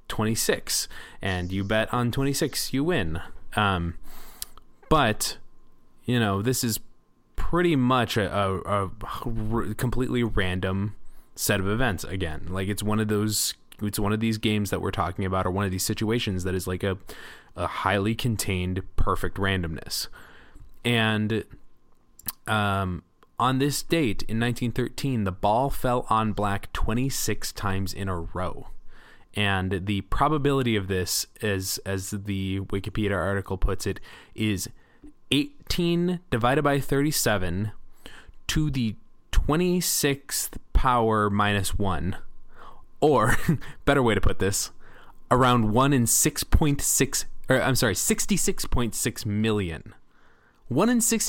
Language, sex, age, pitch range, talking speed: English, male, 20-39, 95-130 Hz, 130 wpm